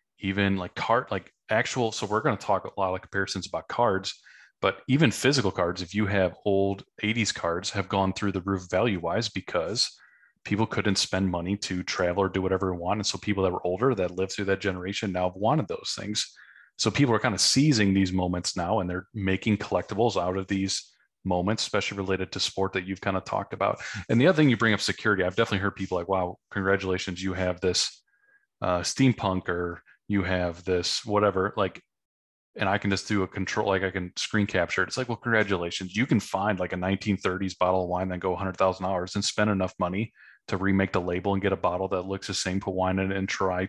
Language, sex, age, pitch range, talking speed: English, male, 30-49, 95-105 Hz, 230 wpm